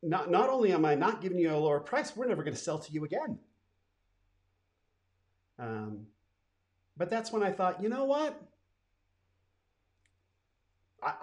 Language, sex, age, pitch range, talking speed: English, male, 40-59, 95-150 Hz, 155 wpm